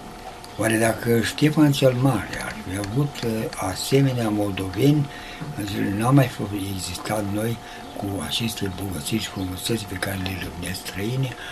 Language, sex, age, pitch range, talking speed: Romanian, male, 60-79, 100-130 Hz, 125 wpm